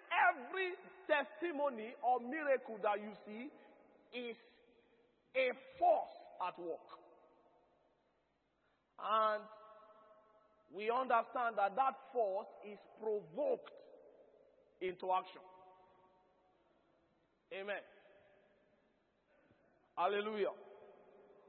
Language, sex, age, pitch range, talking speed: English, male, 40-59, 205-290 Hz, 65 wpm